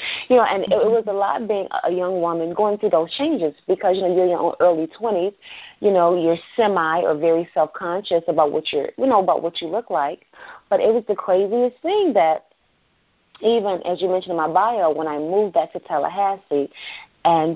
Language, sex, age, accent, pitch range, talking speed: English, female, 30-49, American, 160-220 Hz, 210 wpm